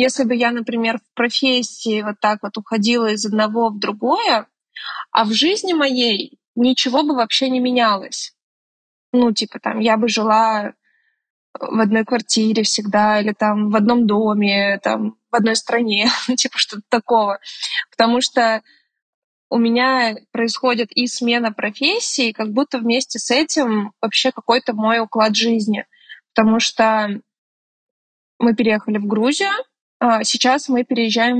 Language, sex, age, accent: Russian, female, 20-39, native